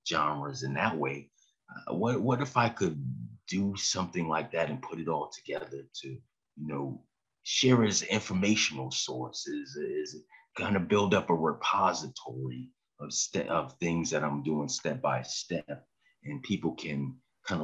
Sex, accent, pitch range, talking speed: male, American, 70-95 Hz, 165 wpm